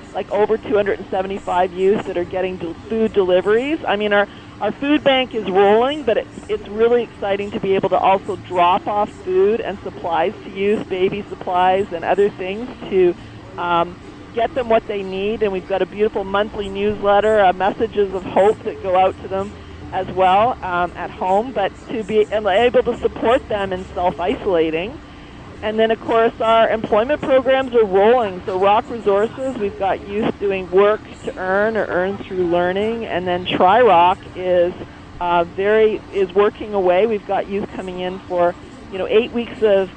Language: English